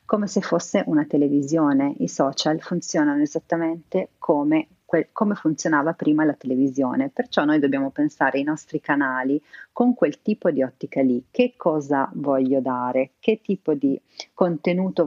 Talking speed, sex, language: 145 wpm, female, Italian